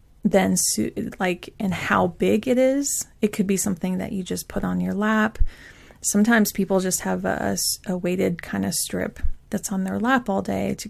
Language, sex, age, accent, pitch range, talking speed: English, female, 30-49, American, 185-220 Hz, 195 wpm